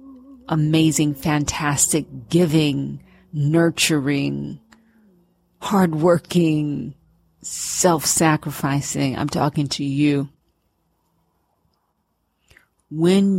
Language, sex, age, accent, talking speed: English, female, 40-59, American, 50 wpm